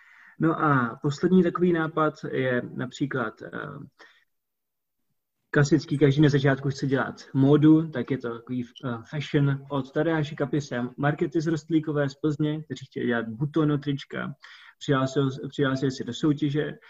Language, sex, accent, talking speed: Czech, male, native, 130 wpm